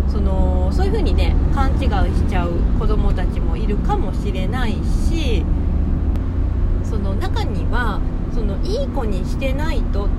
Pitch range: 75-90 Hz